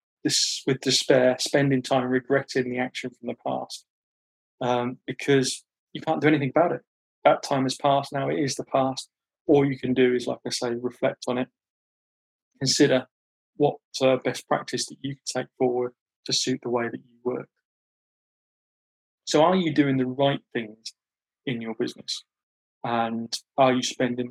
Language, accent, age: English, British, 20-39